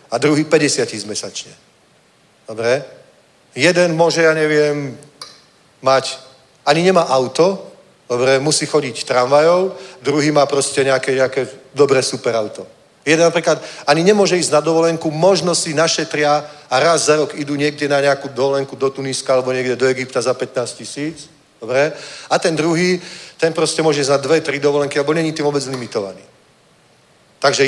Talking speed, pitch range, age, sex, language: 155 wpm, 140-170 Hz, 40-59, male, Czech